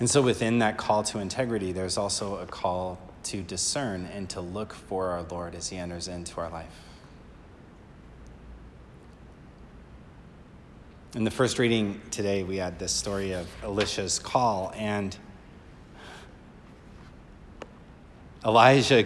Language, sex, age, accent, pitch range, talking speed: English, male, 30-49, American, 90-110 Hz, 125 wpm